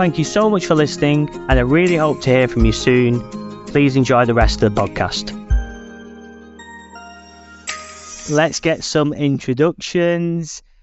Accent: British